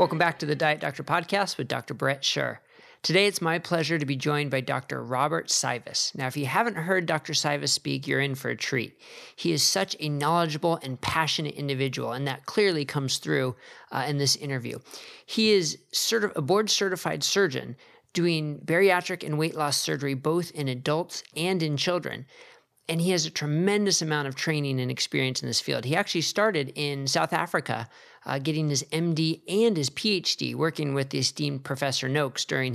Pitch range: 140-170 Hz